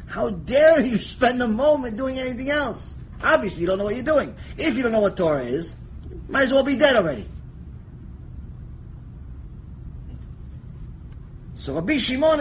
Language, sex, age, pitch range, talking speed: English, male, 30-49, 165-245 Hz, 160 wpm